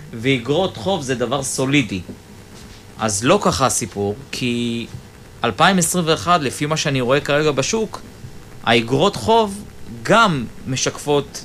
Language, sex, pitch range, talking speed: Hebrew, male, 110-155 Hz, 110 wpm